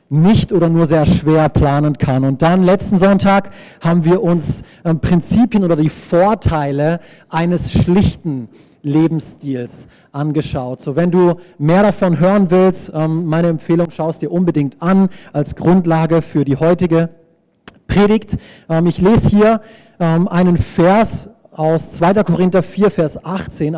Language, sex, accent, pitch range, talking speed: German, male, German, 150-185 Hz, 140 wpm